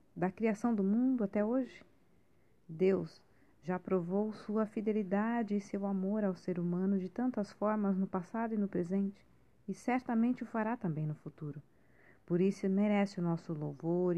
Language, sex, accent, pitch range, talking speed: Portuguese, female, Brazilian, 165-205 Hz, 160 wpm